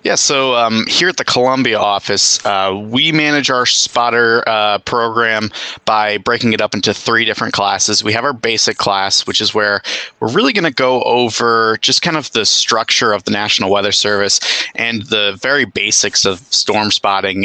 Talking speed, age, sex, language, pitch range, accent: 185 wpm, 30-49, male, English, 100-120 Hz, American